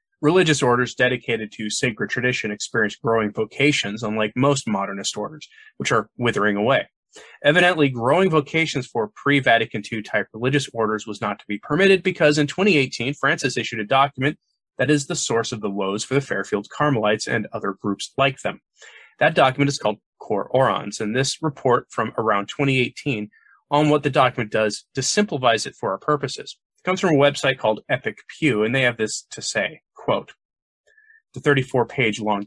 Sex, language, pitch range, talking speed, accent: male, English, 110-150 Hz, 170 wpm, American